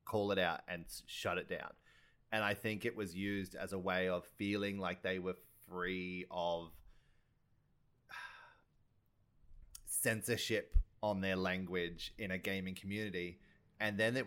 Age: 30-49